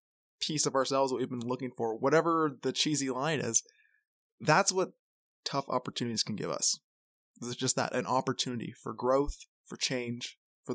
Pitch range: 130-170 Hz